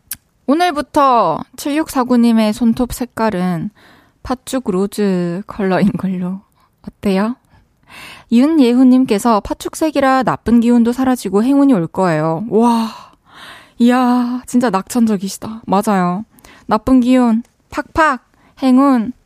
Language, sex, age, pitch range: Korean, female, 20-39, 195-260 Hz